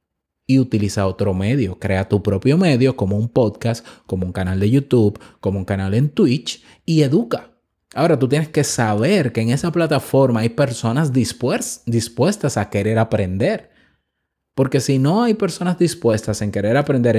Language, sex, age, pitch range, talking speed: Spanish, male, 30-49, 105-155 Hz, 165 wpm